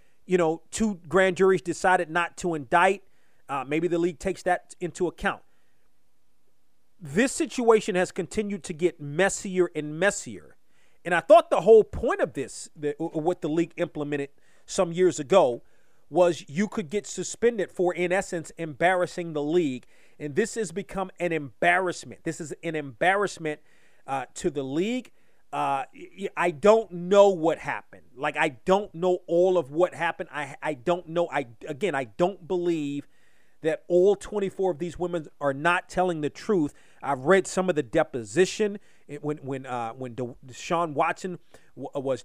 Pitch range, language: 150-190 Hz, English